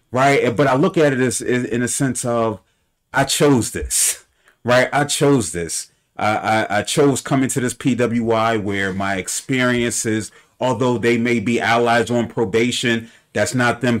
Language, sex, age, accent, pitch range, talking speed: English, male, 30-49, American, 115-145 Hz, 170 wpm